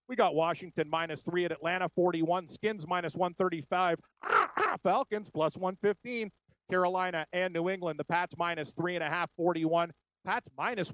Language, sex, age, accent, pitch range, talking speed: English, male, 40-59, American, 170-190 Hz, 165 wpm